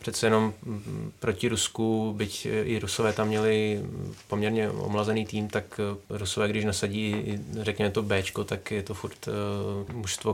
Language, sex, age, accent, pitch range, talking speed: Czech, male, 20-39, native, 100-110 Hz, 140 wpm